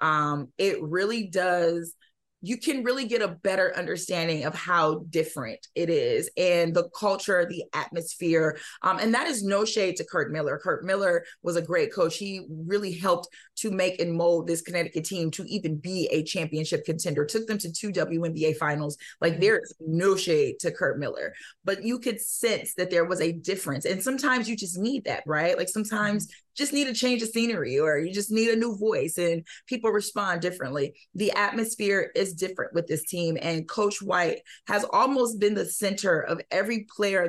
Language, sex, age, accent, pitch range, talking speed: English, female, 30-49, American, 170-220 Hz, 190 wpm